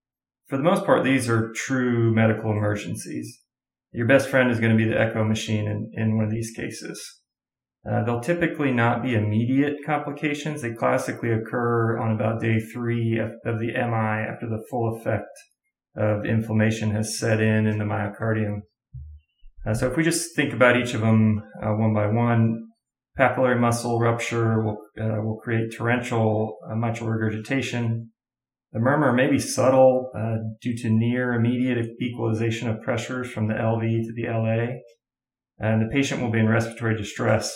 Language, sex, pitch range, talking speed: English, male, 110-125 Hz, 165 wpm